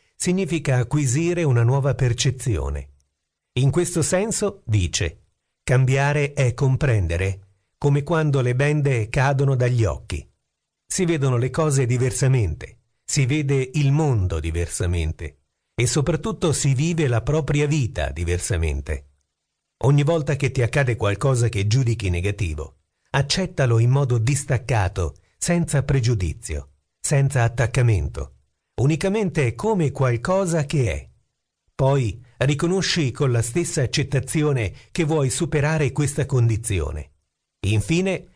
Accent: native